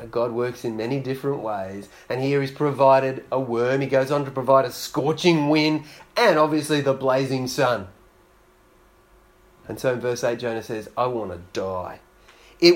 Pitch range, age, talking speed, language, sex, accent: 120-155 Hz, 30-49, 175 wpm, English, male, Australian